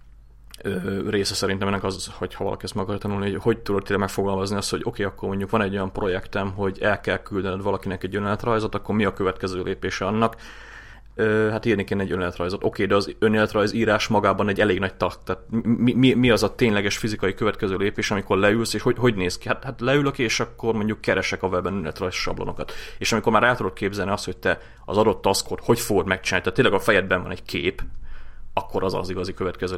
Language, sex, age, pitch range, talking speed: Hungarian, male, 30-49, 95-105 Hz, 215 wpm